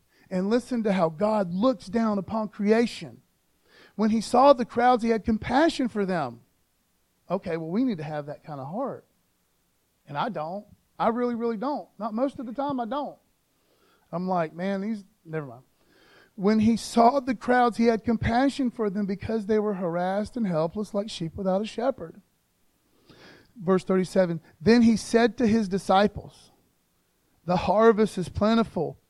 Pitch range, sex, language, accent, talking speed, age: 190-240 Hz, male, English, American, 170 wpm, 40-59